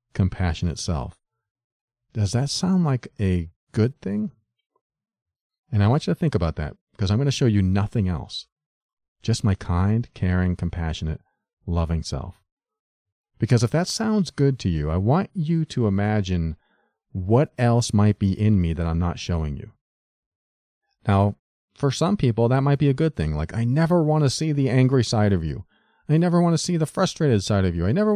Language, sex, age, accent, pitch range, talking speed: English, male, 40-59, American, 95-140 Hz, 190 wpm